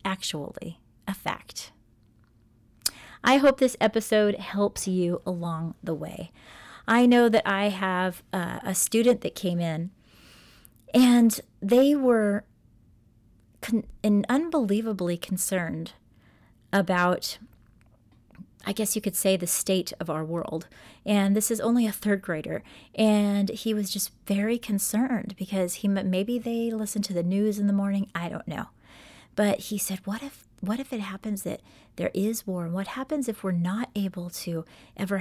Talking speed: 150 wpm